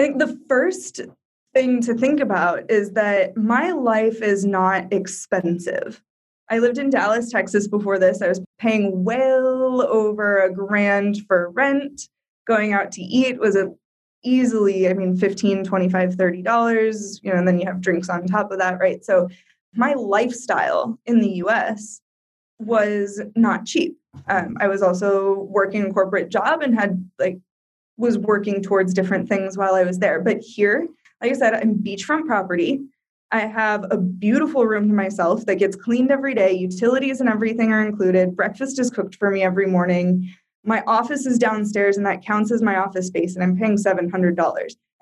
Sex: female